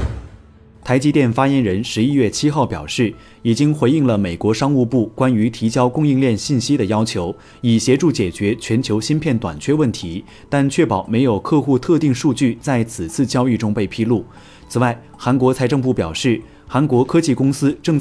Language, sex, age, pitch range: Chinese, male, 30-49, 110-140 Hz